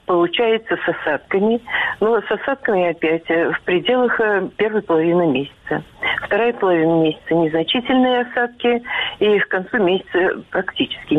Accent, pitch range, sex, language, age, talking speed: native, 180-250 Hz, female, Russian, 50-69, 125 wpm